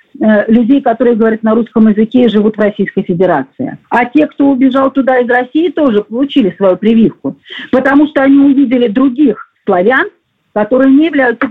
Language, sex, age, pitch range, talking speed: Russian, female, 50-69, 215-270 Hz, 160 wpm